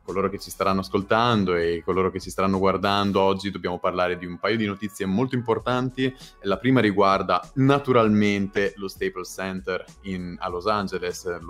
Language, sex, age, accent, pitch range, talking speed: Italian, male, 30-49, native, 90-110 Hz, 160 wpm